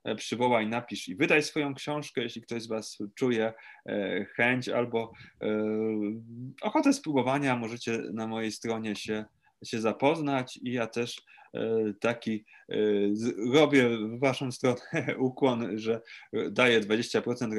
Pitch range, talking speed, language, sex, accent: 105-135 Hz, 115 wpm, Polish, male, native